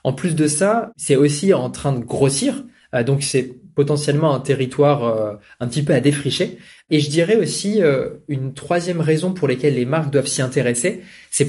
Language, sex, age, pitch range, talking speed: French, male, 20-39, 135-170 Hz, 185 wpm